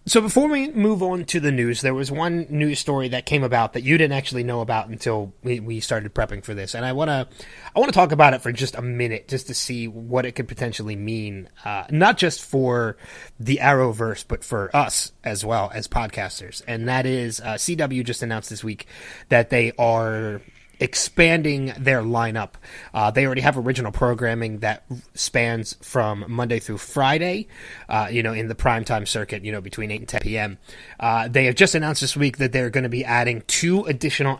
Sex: male